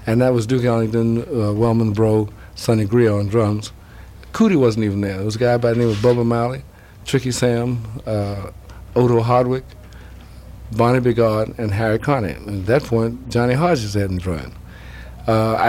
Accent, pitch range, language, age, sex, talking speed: American, 105-120 Hz, English, 60-79, male, 170 wpm